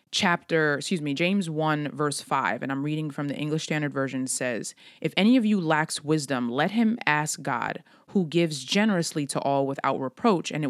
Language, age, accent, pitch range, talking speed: English, 20-39, American, 150-195 Hz, 195 wpm